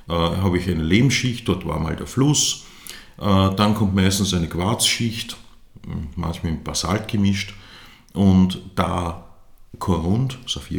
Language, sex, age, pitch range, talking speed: German, male, 50-69, 90-105 Hz, 120 wpm